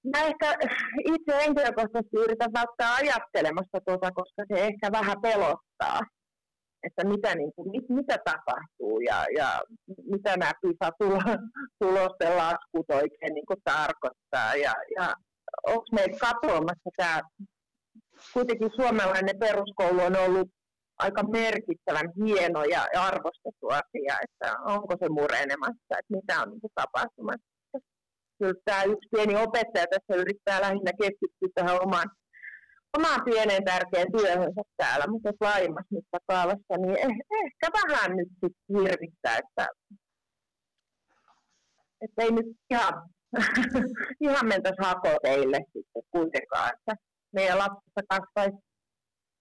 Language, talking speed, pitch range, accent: Finnish, 110 wpm, 185-230 Hz, native